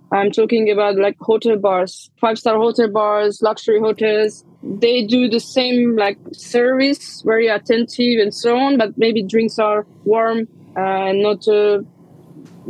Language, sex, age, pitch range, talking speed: English, female, 20-39, 210-245 Hz, 145 wpm